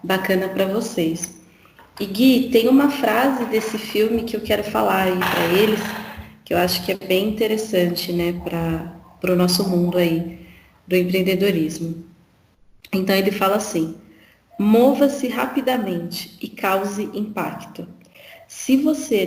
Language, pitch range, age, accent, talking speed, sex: Portuguese, 185-230 Hz, 30-49, Brazilian, 135 wpm, female